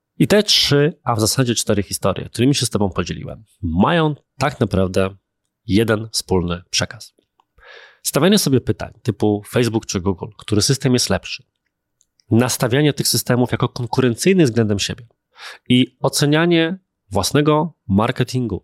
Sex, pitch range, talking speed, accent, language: male, 100-135 Hz, 130 wpm, native, Polish